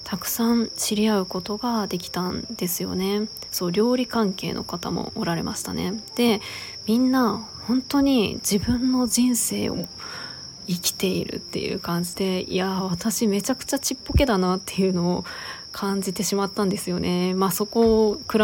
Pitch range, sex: 185-230 Hz, female